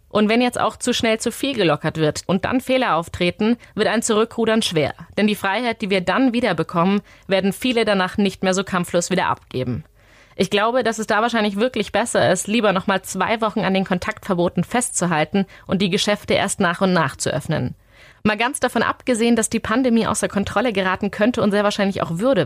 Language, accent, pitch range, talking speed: German, German, 185-220 Hz, 205 wpm